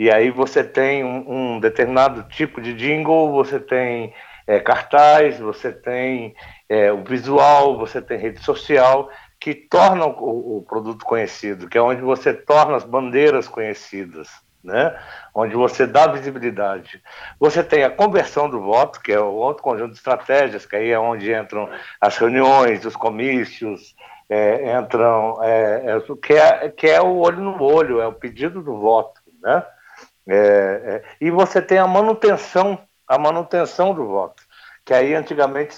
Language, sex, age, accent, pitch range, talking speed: Portuguese, male, 60-79, Brazilian, 115-160 Hz, 150 wpm